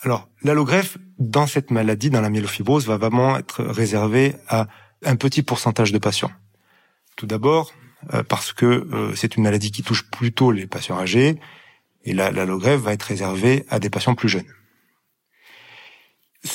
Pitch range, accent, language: 105-140 Hz, French, French